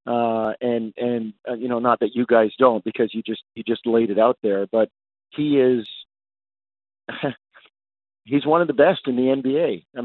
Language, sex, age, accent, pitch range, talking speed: English, male, 50-69, American, 110-135 Hz, 190 wpm